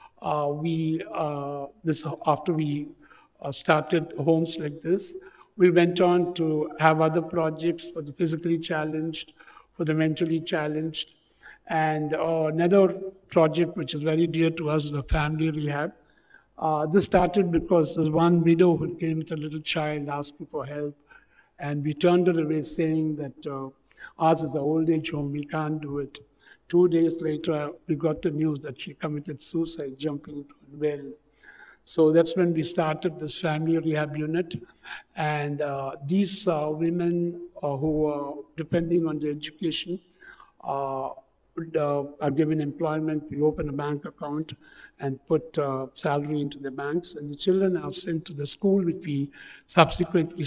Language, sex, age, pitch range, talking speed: English, male, 60-79, 150-170 Hz, 160 wpm